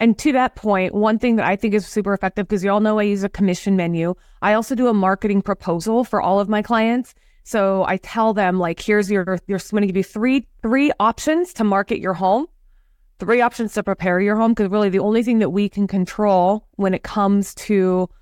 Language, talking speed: English, 225 wpm